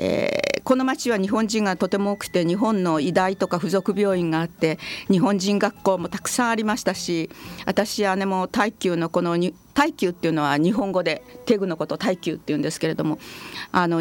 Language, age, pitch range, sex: Japanese, 50-69, 170-225 Hz, female